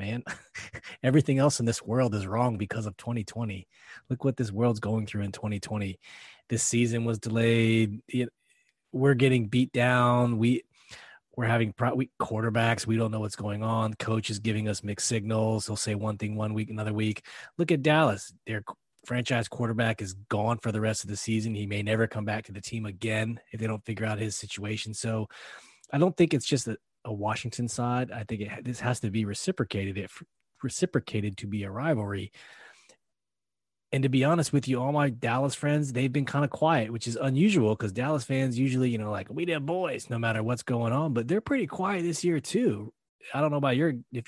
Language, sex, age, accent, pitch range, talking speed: English, male, 20-39, American, 110-135 Hz, 210 wpm